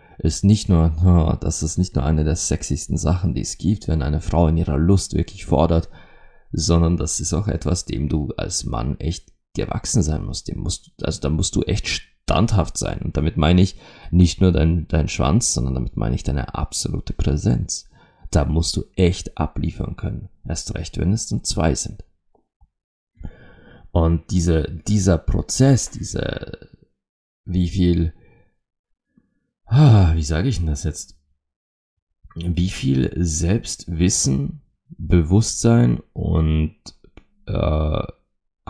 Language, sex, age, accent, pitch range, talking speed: German, male, 30-49, German, 80-95 Hz, 145 wpm